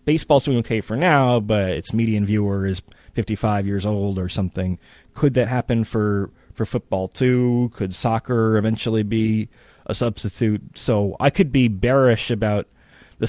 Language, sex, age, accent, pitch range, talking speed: English, male, 30-49, American, 100-120 Hz, 160 wpm